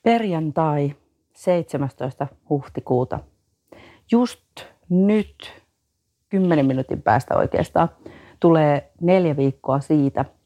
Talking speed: 75 wpm